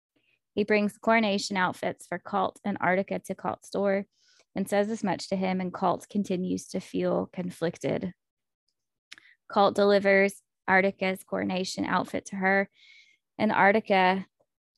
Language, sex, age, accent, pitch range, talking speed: English, female, 20-39, American, 185-215 Hz, 130 wpm